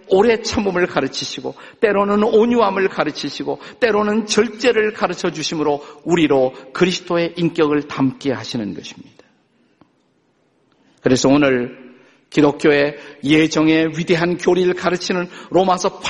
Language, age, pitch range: Korean, 50-69, 140-195 Hz